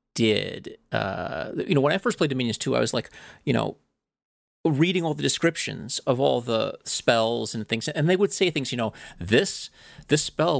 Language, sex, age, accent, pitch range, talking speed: English, male, 30-49, American, 120-180 Hz, 200 wpm